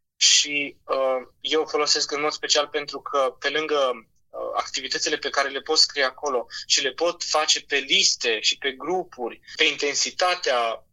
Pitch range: 140-180 Hz